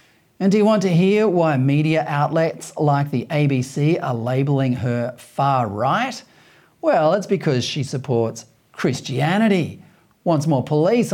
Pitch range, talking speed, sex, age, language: 145-210 Hz, 140 wpm, male, 40-59, English